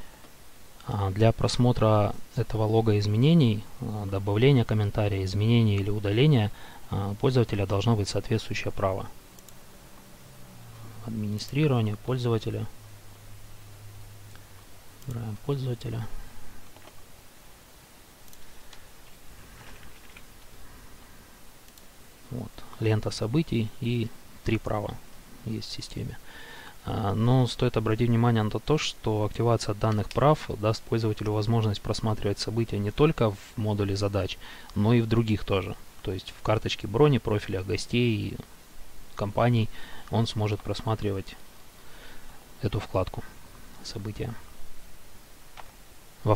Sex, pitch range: male, 100-115 Hz